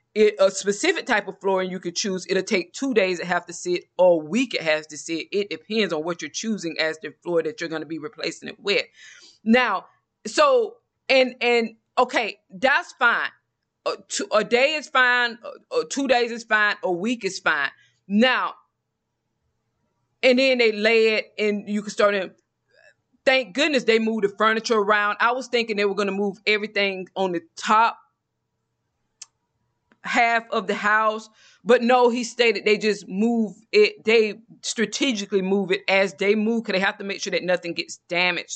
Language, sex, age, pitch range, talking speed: English, female, 20-39, 195-250 Hz, 190 wpm